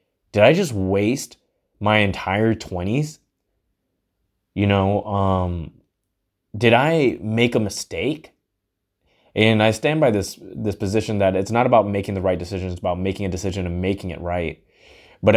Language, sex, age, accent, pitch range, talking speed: English, male, 20-39, American, 95-110 Hz, 155 wpm